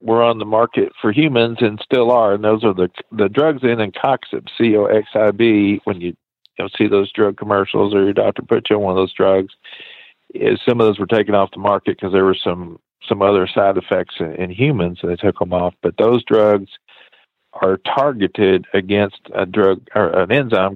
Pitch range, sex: 90-105 Hz, male